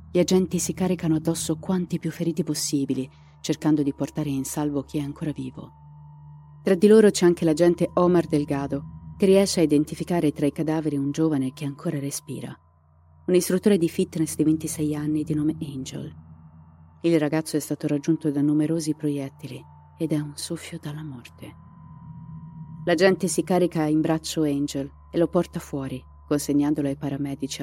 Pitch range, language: 140-160 Hz, Italian